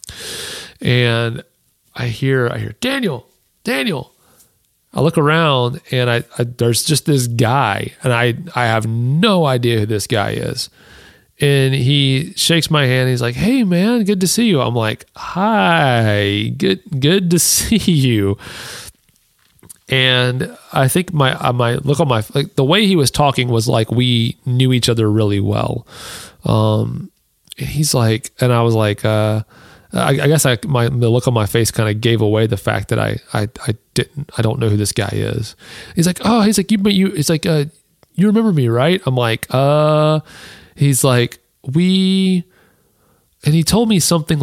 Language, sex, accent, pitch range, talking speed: English, male, American, 120-165 Hz, 180 wpm